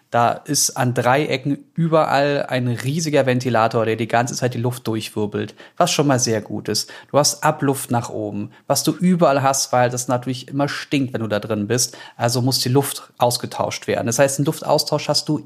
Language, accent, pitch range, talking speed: German, German, 130-160 Hz, 205 wpm